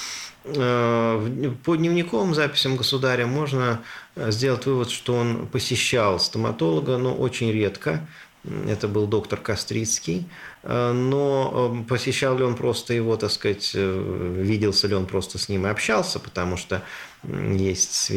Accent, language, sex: native, Russian, male